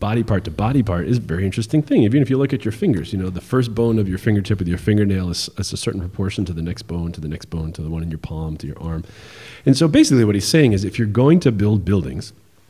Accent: American